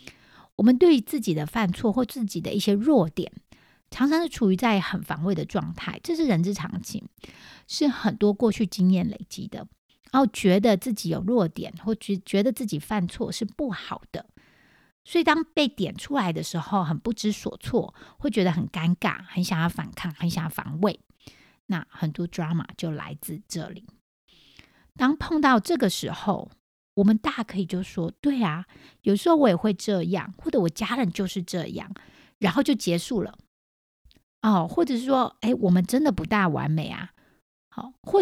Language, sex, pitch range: Chinese, female, 175-235 Hz